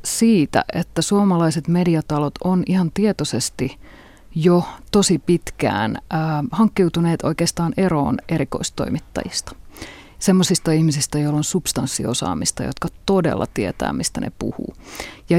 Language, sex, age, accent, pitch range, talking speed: Finnish, female, 30-49, native, 150-175 Hz, 105 wpm